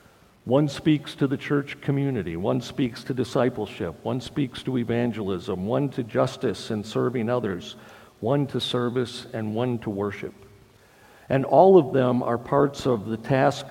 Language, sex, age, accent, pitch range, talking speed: English, male, 50-69, American, 110-140 Hz, 160 wpm